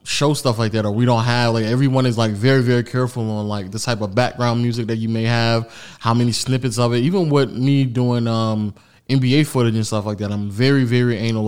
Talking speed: 240 wpm